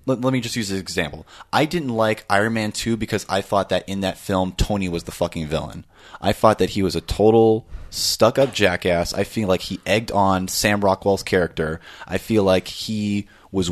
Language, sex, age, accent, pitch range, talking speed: English, male, 20-39, American, 85-105 Hz, 205 wpm